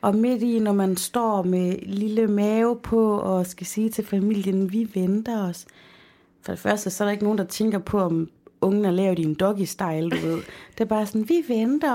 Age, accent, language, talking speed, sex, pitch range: 30-49, native, Danish, 220 wpm, female, 185-235 Hz